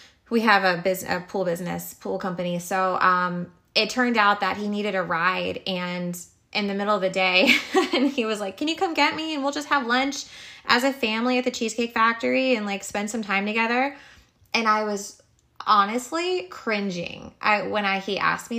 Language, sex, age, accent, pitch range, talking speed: English, female, 20-39, American, 185-220 Hz, 205 wpm